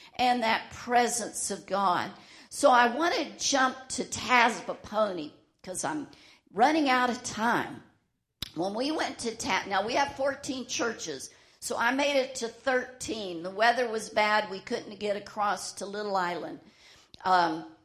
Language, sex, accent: English, female, American